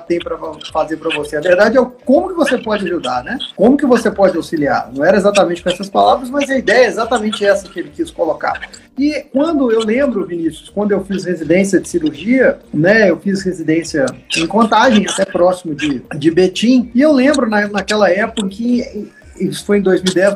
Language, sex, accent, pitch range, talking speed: Portuguese, male, Brazilian, 185-260 Hz, 200 wpm